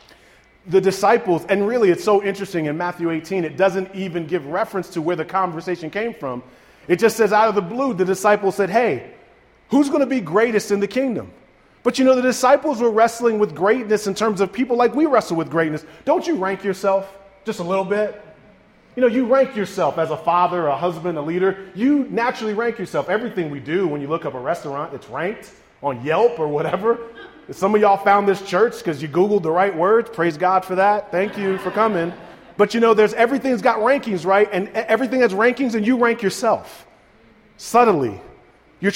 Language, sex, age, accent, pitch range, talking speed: English, male, 30-49, American, 185-255 Hz, 210 wpm